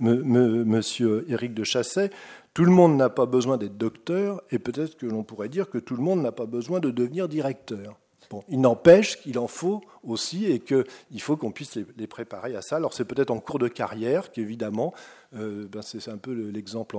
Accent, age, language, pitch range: French, 40-59, French, 110-140 Hz